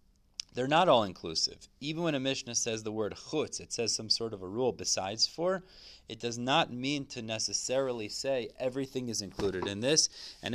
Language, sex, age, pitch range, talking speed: English, male, 30-49, 100-120 Hz, 190 wpm